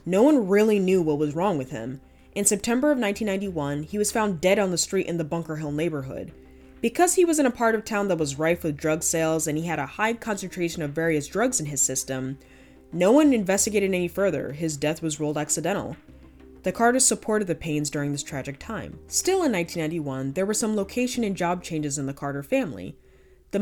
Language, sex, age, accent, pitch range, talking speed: English, female, 20-39, American, 150-210 Hz, 215 wpm